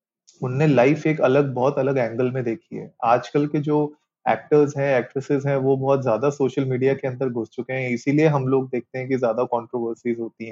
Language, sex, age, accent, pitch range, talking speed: Hindi, male, 30-49, native, 120-150 Hz, 205 wpm